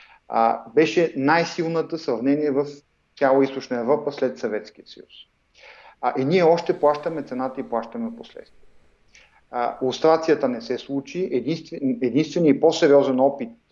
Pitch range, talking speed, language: 125-150 Hz, 115 wpm, English